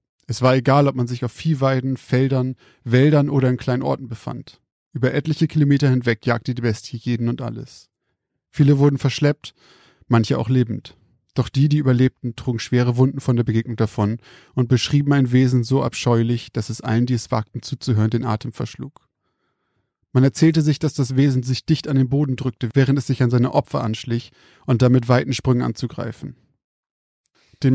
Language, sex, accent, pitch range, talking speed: German, male, German, 120-140 Hz, 180 wpm